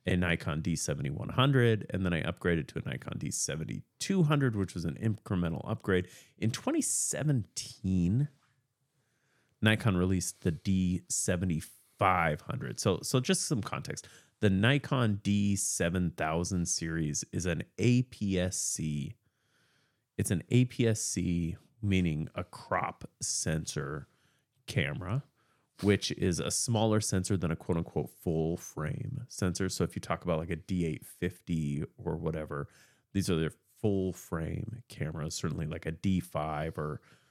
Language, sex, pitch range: English, male, 90-125 Hz